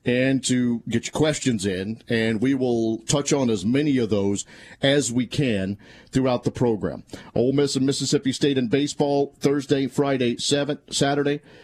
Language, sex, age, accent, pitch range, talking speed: English, male, 50-69, American, 115-140 Hz, 165 wpm